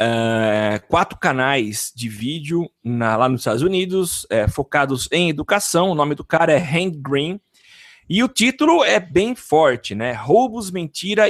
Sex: male